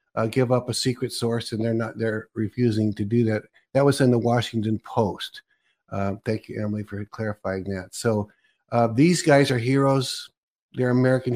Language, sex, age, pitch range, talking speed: English, male, 50-69, 110-125 Hz, 185 wpm